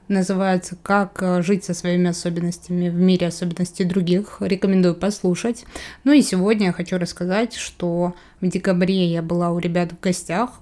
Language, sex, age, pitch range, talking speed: Russian, female, 20-39, 180-210 Hz, 155 wpm